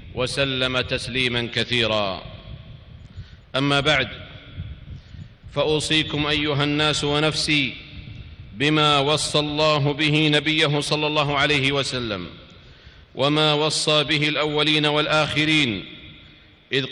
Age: 40-59